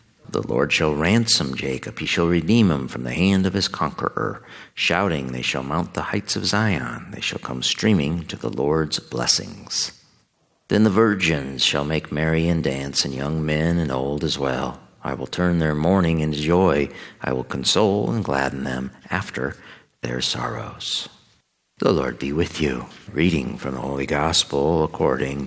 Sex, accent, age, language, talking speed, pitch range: male, American, 50-69, English, 170 wpm, 70-90 Hz